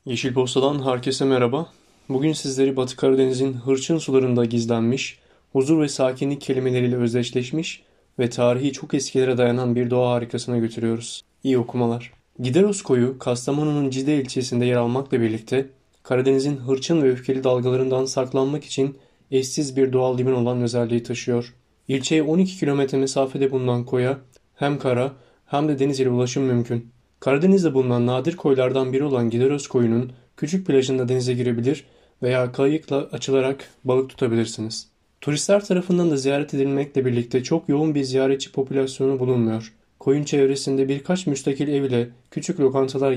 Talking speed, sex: 140 wpm, male